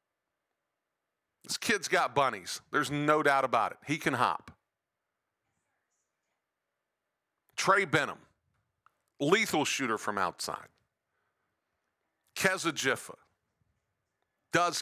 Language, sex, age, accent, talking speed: English, male, 50-69, American, 85 wpm